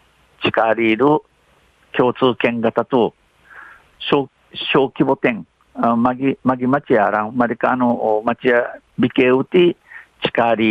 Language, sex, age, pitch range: Japanese, male, 60-79, 115-140 Hz